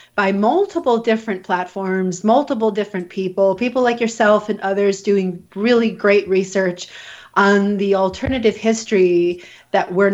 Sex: female